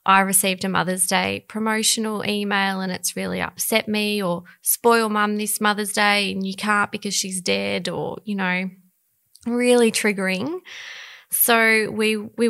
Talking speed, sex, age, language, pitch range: 155 wpm, female, 20-39, English, 180-210 Hz